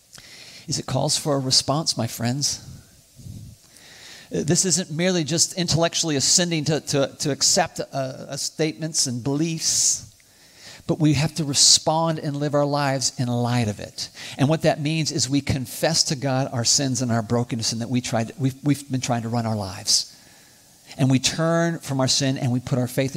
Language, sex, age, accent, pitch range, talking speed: English, male, 50-69, American, 130-180 Hz, 175 wpm